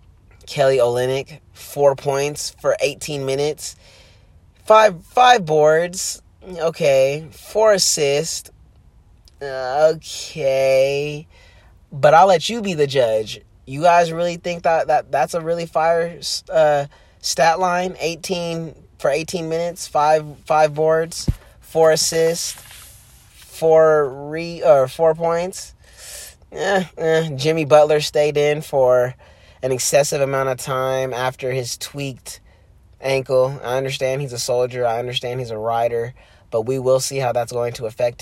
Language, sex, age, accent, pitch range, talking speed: English, male, 30-49, American, 115-150 Hz, 130 wpm